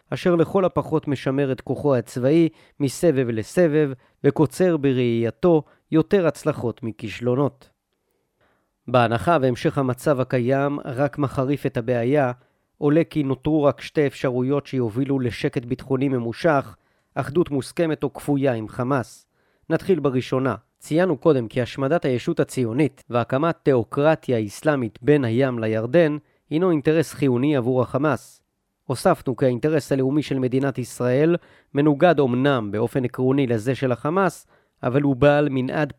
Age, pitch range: 40-59, 125-150 Hz